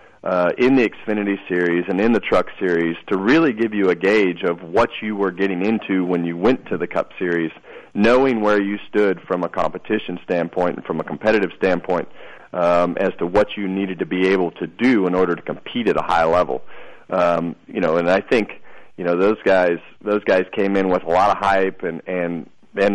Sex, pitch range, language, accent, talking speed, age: male, 90-100 Hz, English, American, 215 wpm, 40-59